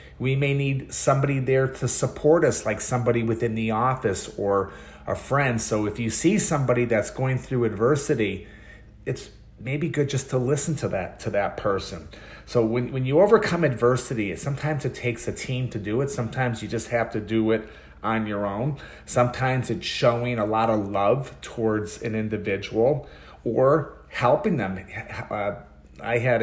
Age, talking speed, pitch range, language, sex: 30-49, 175 wpm, 105-130 Hz, English, male